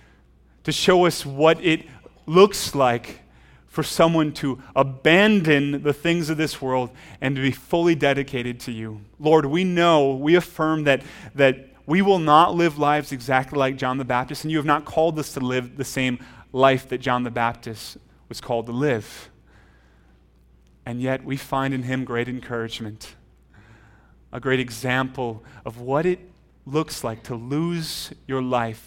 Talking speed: 165 wpm